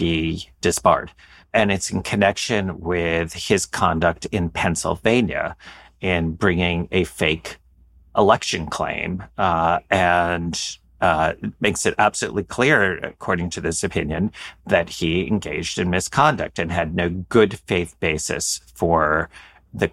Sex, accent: male, American